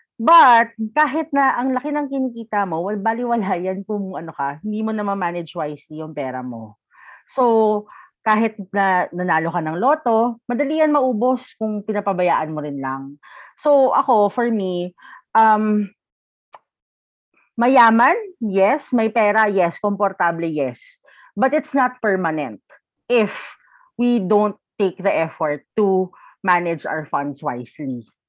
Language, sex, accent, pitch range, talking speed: Filipino, female, native, 175-235 Hz, 135 wpm